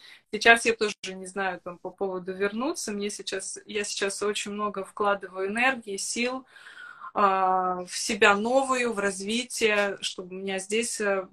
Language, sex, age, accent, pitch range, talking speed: Ukrainian, female, 20-39, native, 195-235 Hz, 150 wpm